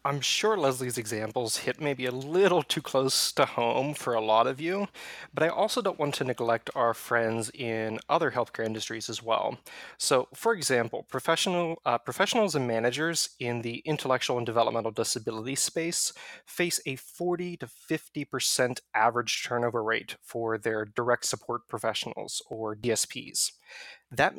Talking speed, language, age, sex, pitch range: 155 wpm, English, 20-39, male, 115-145 Hz